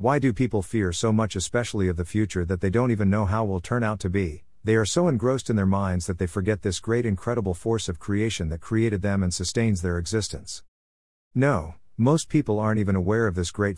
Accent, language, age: American, English, 50-69